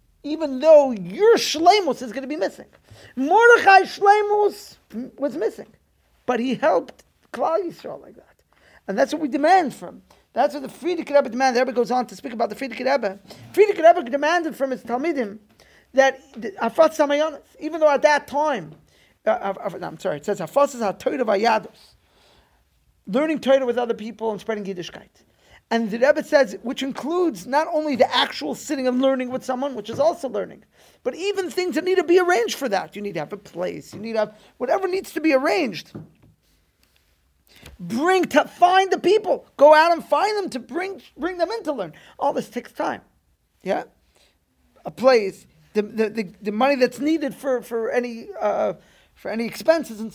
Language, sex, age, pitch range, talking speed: English, male, 40-59, 225-315 Hz, 185 wpm